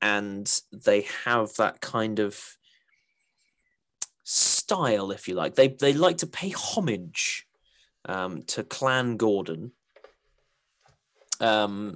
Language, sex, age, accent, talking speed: English, male, 20-39, British, 105 wpm